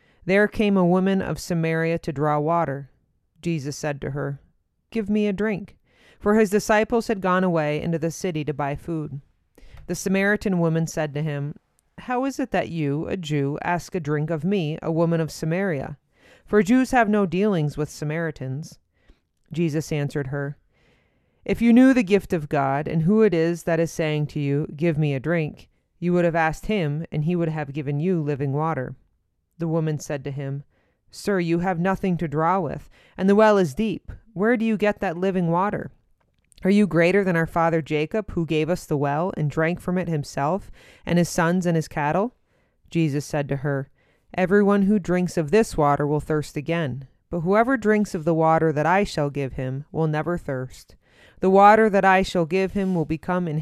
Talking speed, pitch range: 200 wpm, 150-190 Hz